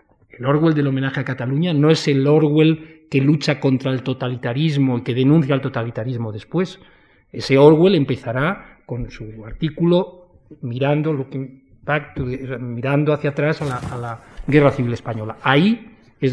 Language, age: Spanish, 40-59